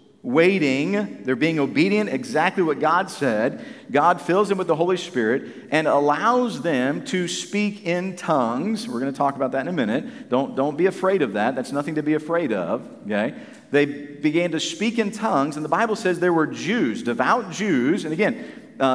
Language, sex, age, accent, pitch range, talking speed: English, male, 40-59, American, 140-205 Hz, 195 wpm